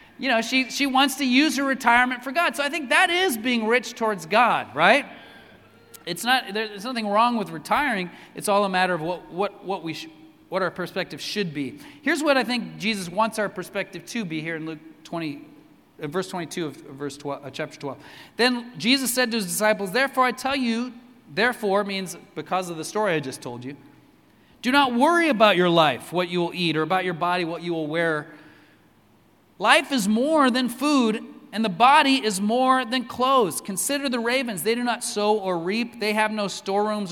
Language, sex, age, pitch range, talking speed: English, male, 30-49, 175-245 Hz, 210 wpm